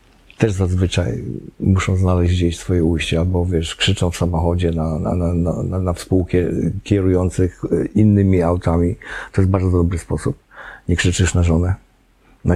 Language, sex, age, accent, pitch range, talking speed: Polish, male, 50-69, native, 90-110 Hz, 150 wpm